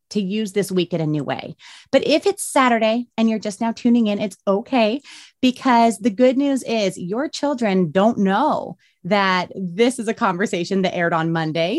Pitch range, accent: 190-255 Hz, American